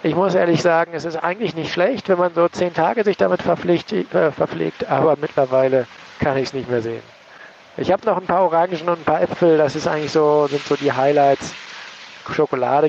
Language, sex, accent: German, male, German